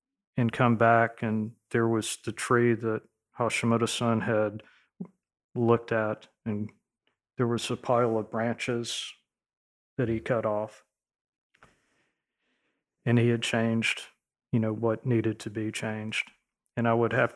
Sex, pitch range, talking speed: male, 110-130 Hz, 140 wpm